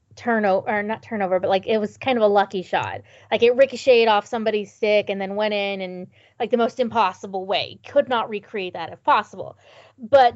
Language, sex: English, female